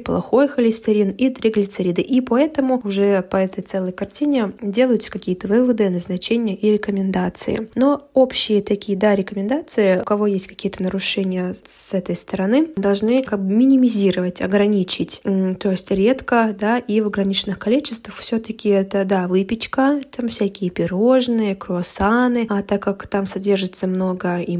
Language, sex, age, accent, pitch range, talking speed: Russian, female, 10-29, native, 185-220 Hz, 145 wpm